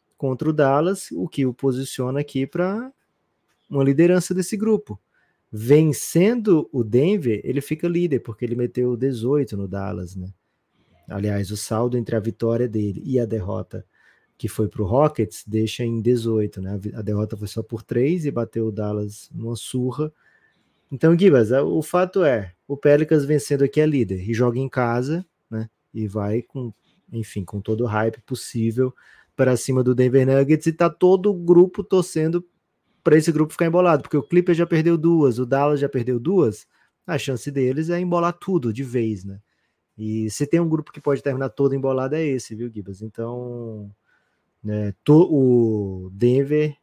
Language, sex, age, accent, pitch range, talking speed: Portuguese, male, 20-39, Brazilian, 115-155 Hz, 175 wpm